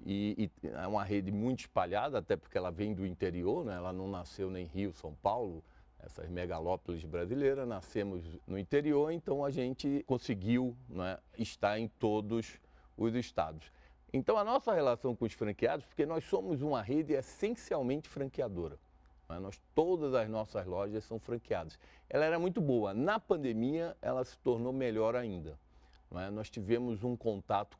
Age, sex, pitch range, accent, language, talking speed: 40-59, male, 90-120 Hz, Brazilian, Portuguese, 165 wpm